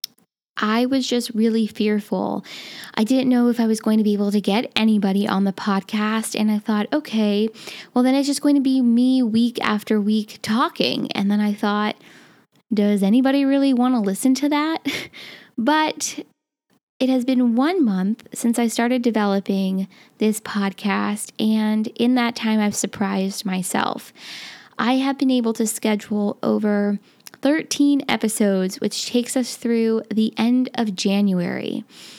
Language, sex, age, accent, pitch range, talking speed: English, female, 10-29, American, 210-255 Hz, 160 wpm